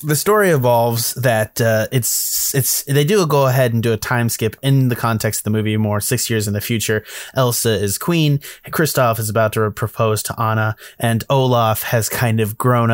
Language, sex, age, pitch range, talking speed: English, male, 20-39, 110-130 Hz, 205 wpm